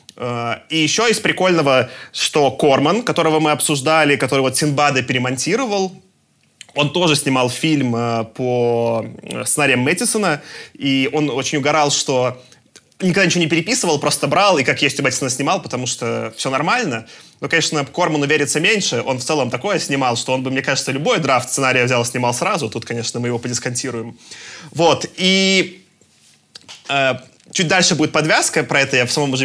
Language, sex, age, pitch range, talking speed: Russian, male, 20-39, 120-155 Hz, 165 wpm